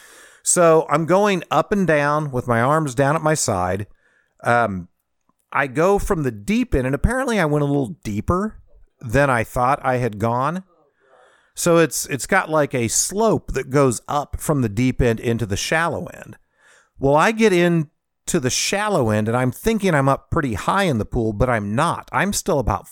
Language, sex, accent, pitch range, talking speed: English, male, American, 115-165 Hz, 195 wpm